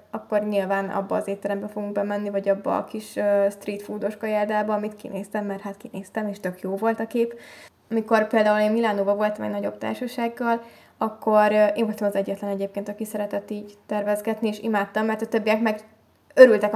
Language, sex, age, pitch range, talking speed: Hungarian, female, 10-29, 200-215 Hz, 180 wpm